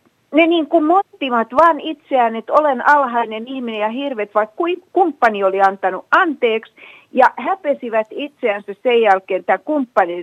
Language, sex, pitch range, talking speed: Finnish, female, 195-280 Hz, 130 wpm